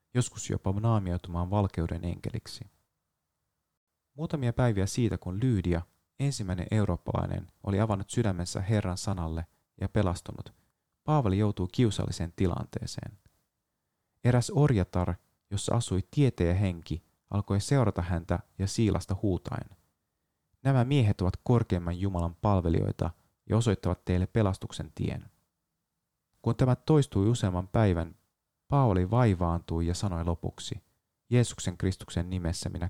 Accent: native